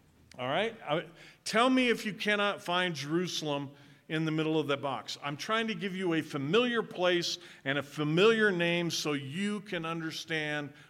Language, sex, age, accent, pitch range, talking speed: English, male, 50-69, American, 155-205 Hz, 170 wpm